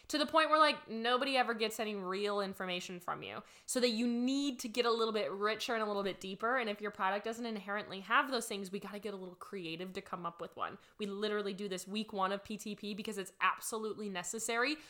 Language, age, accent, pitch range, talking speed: English, 10-29, American, 200-230 Hz, 245 wpm